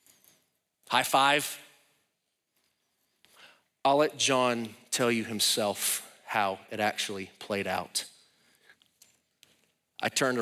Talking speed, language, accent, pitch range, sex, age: 85 wpm, English, American, 105-120 Hz, male, 30-49